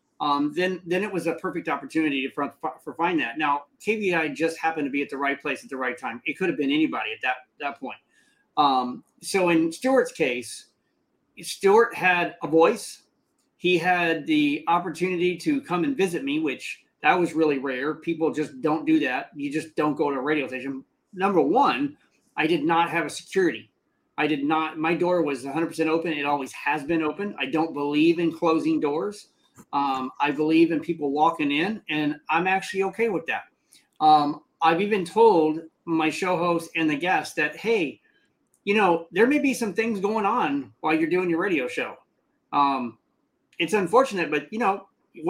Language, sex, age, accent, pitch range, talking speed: English, male, 30-49, American, 155-230 Hz, 190 wpm